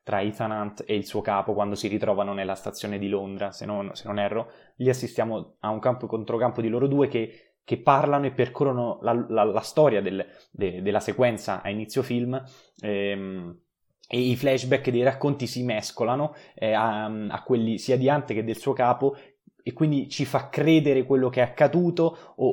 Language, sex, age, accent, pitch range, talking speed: Italian, male, 20-39, native, 105-130 Hz, 195 wpm